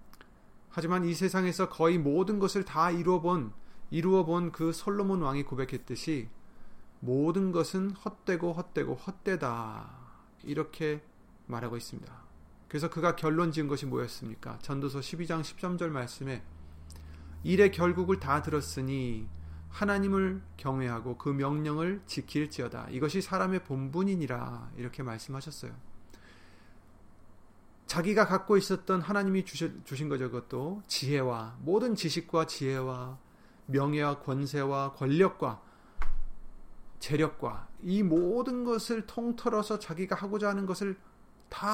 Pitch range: 130-190 Hz